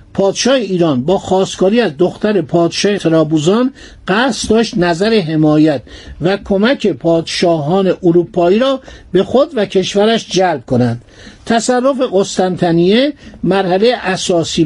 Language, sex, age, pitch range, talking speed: Persian, male, 60-79, 170-215 Hz, 110 wpm